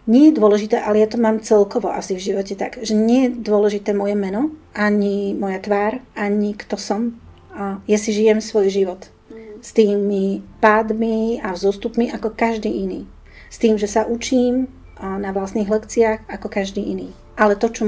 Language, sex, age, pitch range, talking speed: Slovak, female, 40-59, 190-220 Hz, 170 wpm